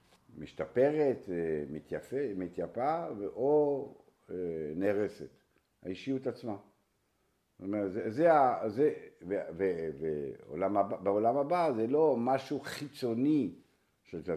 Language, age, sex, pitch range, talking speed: Hebrew, 60-79, male, 85-135 Hz, 80 wpm